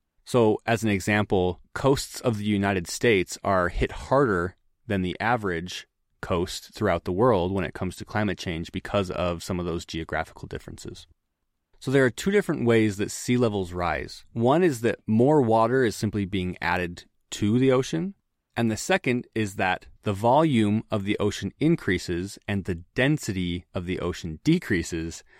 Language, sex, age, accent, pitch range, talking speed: English, male, 30-49, American, 95-115 Hz, 170 wpm